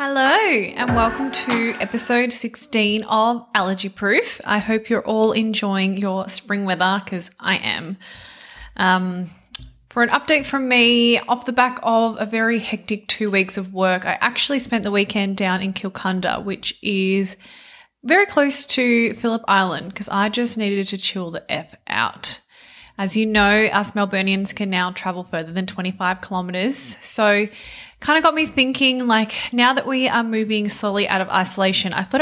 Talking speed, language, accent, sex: 170 wpm, English, Australian, female